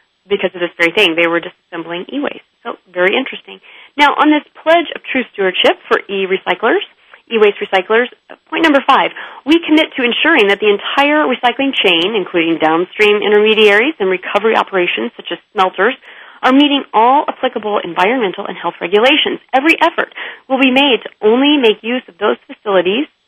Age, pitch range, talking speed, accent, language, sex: 30-49, 190-275 Hz, 165 wpm, American, English, female